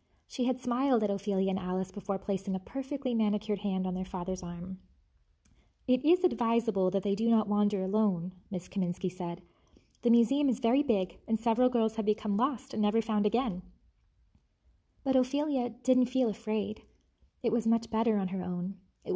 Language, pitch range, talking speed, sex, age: English, 195-230 Hz, 180 wpm, female, 20-39